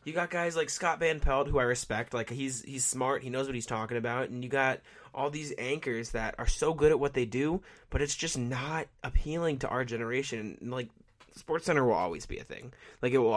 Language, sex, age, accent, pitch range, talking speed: English, male, 20-39, American, 115-135 Hz, 240 wpm